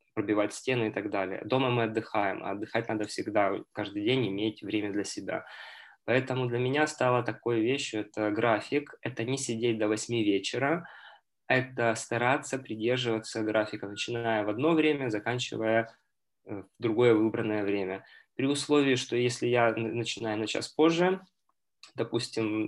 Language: Russian